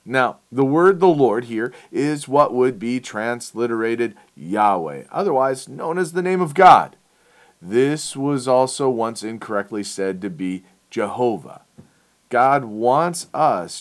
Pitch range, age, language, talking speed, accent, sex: 125-185 Hz, 40-59, English, 135 wpm, American, male